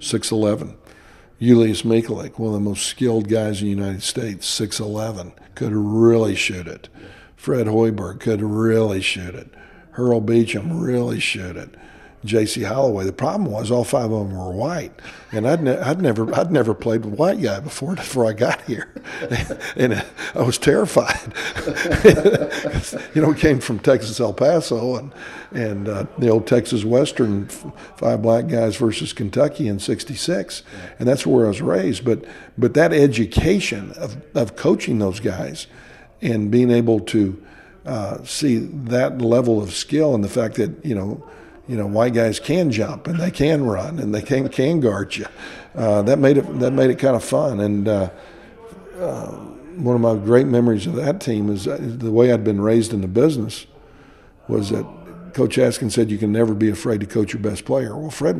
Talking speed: 185 wpm